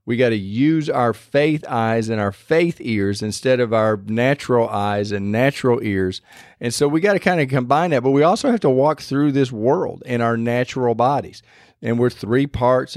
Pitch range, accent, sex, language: 115-140 Hz, American, male, English